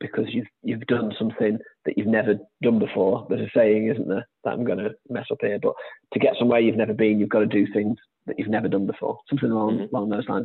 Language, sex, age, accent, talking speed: English, male, 30-49, British, 245 wpm